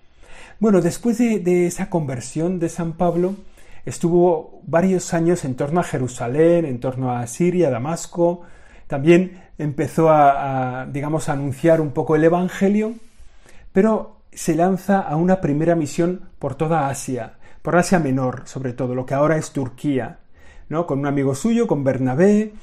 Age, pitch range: 40-59, 135-175 Hz